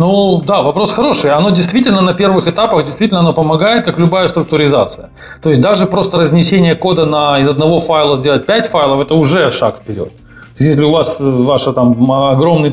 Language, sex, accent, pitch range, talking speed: Russian, male, native, 135-190 Hz, 190 wpm